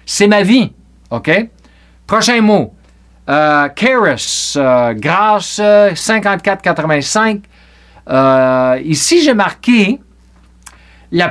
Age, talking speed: 50-69, 90 wpm